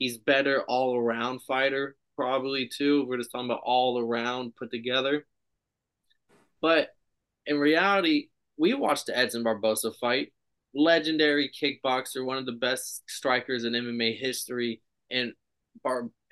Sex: male